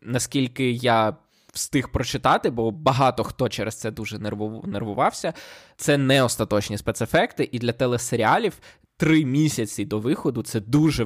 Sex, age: male, 20-39